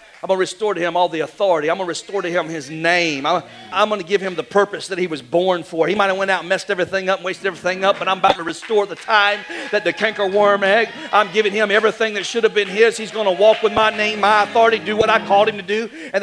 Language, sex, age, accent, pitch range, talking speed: English, male, 40-59, American, 170-210 Hz, 295 wpm